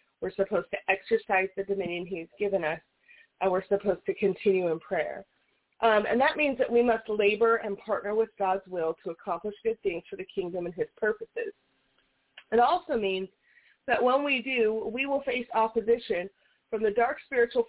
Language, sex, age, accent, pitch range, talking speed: English, female, 30-49, American, 195-250 Hz, 185 wpm